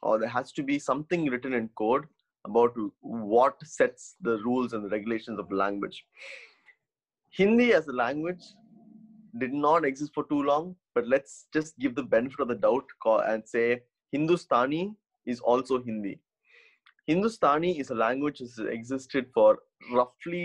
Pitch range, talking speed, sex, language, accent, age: 115-165 Hz, 155 wpm, male, Tamil, native, 20-39